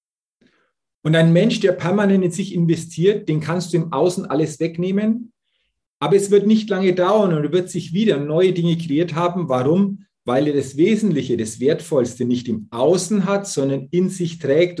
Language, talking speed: German, 180 wpm